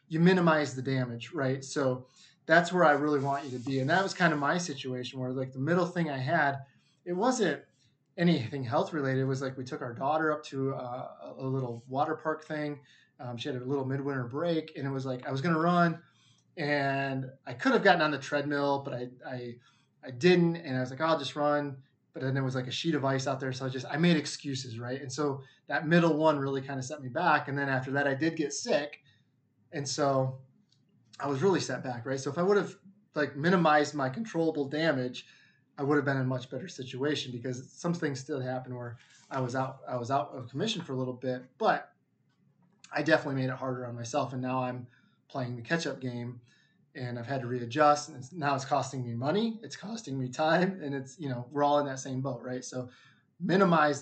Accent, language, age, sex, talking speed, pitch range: American, English, 20-39, male, 235 wpm, 130-150 Hz